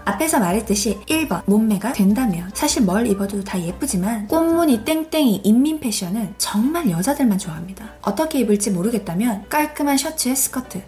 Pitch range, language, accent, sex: 200-260 Hz, Korean, native, female